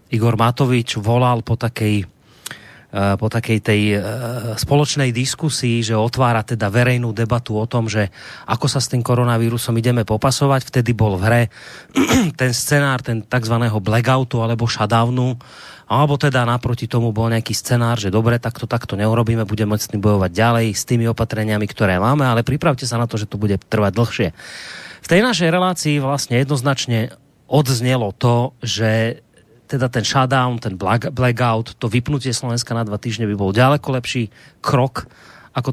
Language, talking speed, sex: Slovak, 160 wpm, male